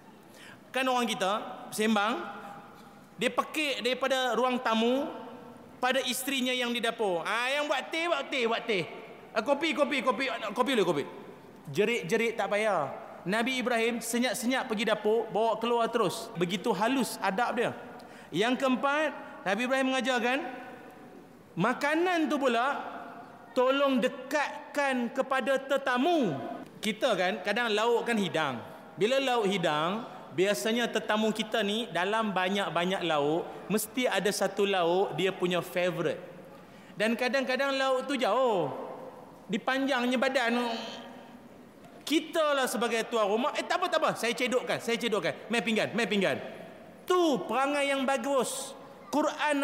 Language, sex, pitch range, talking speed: Malay, male, 220-270 Hz, 130 wpm